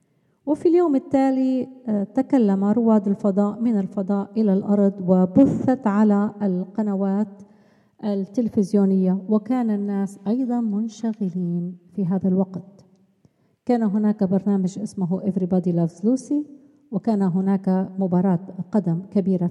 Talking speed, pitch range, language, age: 100 wpm, 195-240 Hz, Arabic, 50-69